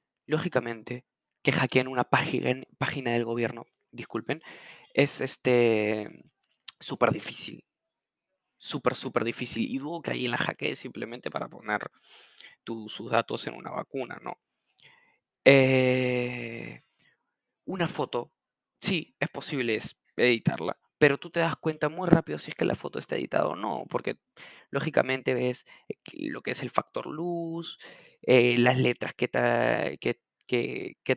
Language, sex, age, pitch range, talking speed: Spanish, male, 20-39, 120-145 Hz, 135 wpm